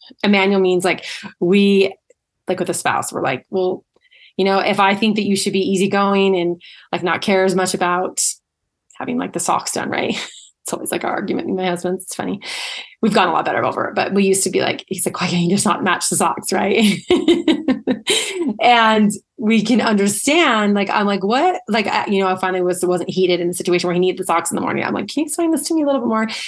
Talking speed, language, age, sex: 245 wpm, English, 20-39, female